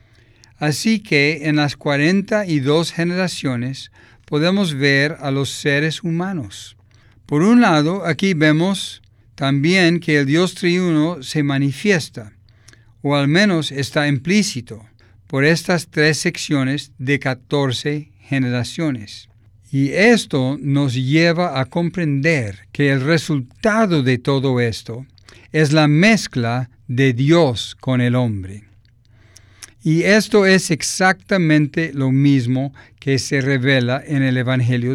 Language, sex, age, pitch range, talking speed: Spanish, male, 50-69, 120-165 Hz, 115 wpm